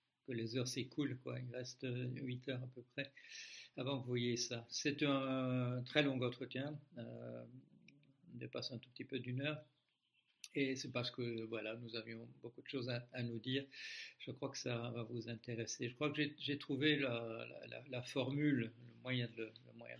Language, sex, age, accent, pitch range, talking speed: French, male, 60-79, French, 120-140 Hz, 190 wpm